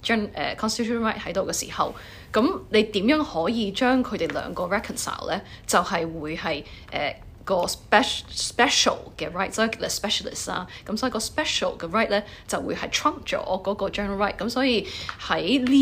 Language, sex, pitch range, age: Chinese, female, 195-250 Hz, 20-39